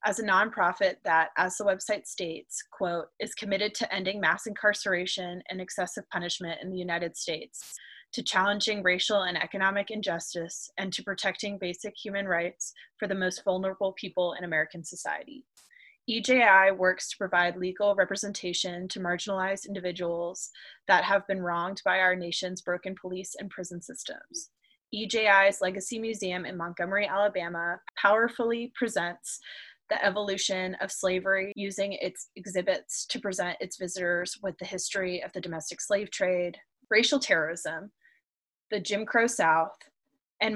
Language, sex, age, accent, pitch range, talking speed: English, female, 20-39, American, 180-205 Hz, 145 wpm